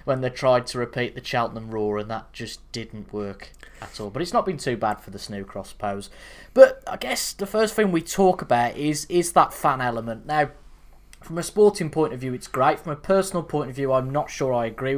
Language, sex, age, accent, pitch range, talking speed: English, male, 10-29, British, 120-155 Hz, 235 wpm